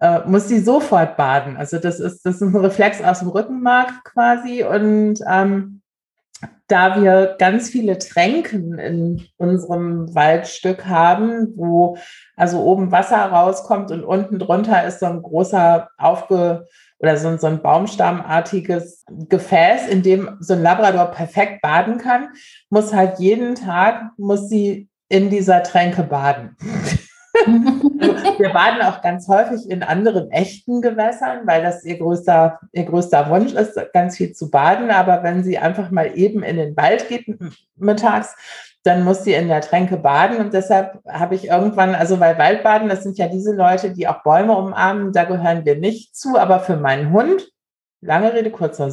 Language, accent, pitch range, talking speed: German, German, 175-210 Hz, 165 wpm